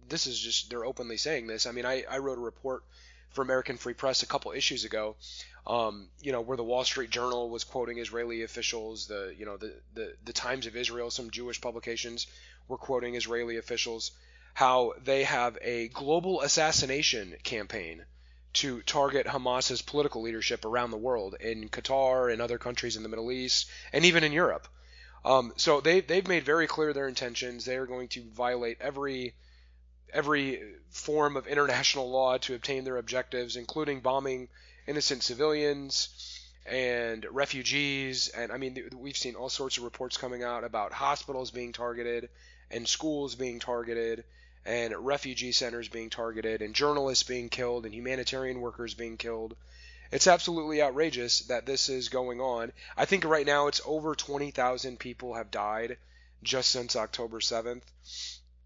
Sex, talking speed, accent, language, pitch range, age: male, 165 wpm, American, English, 115-135 Hz, 20-39